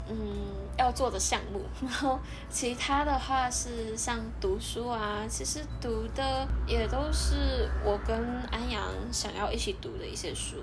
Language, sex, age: Chinese, female, 10-29